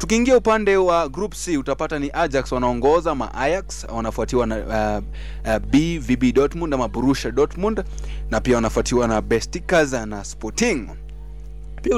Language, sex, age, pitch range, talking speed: Swahili, male, 20-39, 110-140 Hz, 130 wpm